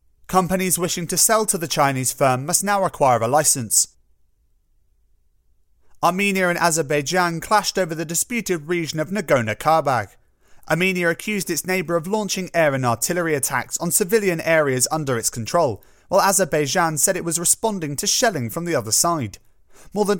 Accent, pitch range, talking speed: British, 135-195 Hz, 160 wpm